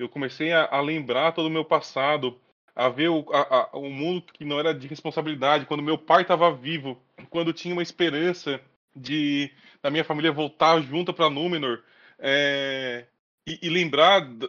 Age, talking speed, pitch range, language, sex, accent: 20-39, 155 wpm, 145-180 Hz, Portuguese, male, Brazilian